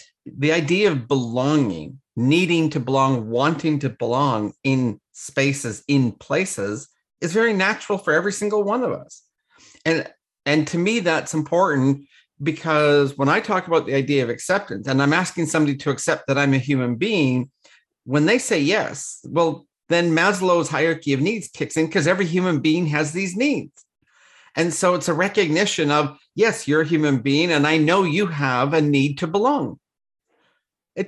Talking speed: 170 wpm